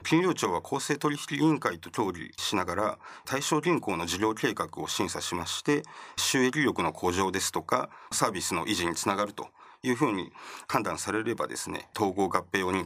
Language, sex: Japanese, male